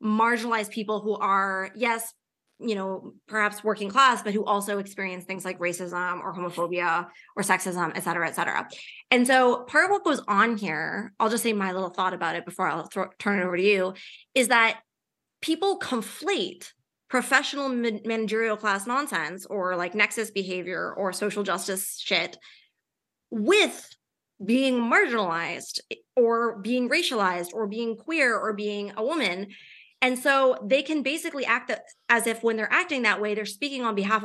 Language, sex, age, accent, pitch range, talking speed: English, female, 20-39, American, 195-245 Hz, 165 wpm